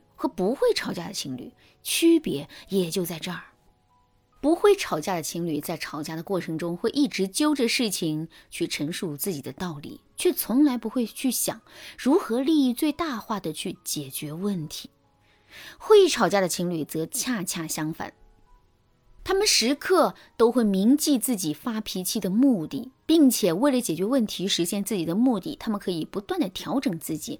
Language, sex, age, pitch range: Chinese, female, 20-39, 170-255 Hz